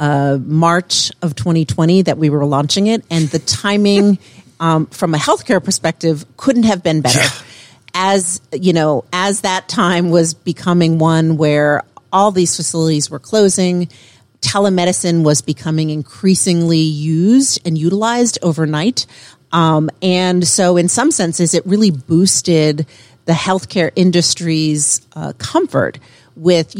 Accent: American